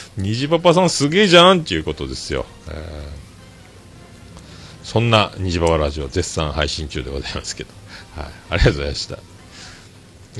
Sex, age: male, 40-59